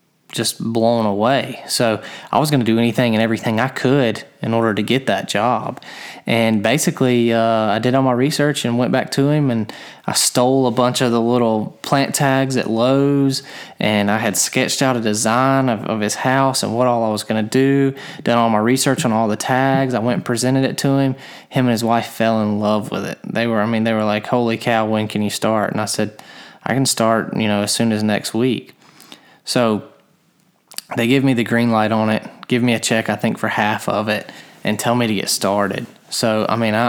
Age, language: 20-39, English